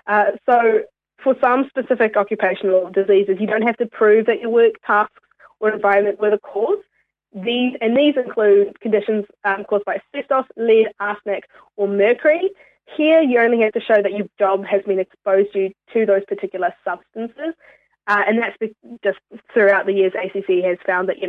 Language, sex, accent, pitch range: English, female, Australian, 195-225 Hz